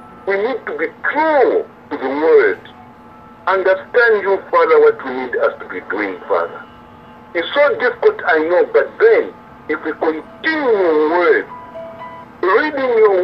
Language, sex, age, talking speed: English, male, 60-79, 150 wpm